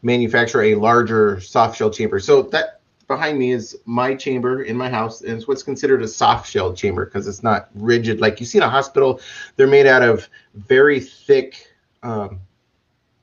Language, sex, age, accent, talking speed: English, male, 30-49, American, 185 wpm